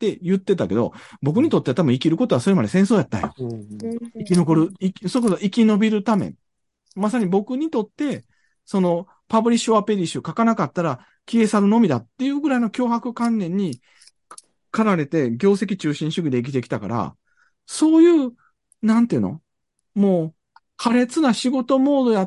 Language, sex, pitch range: Japanese, male, 180-260 Hz